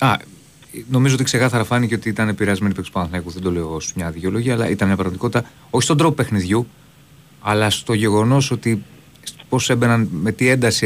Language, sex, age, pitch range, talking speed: Greek, male, 30-49, 100-135 Hz, 175 wpm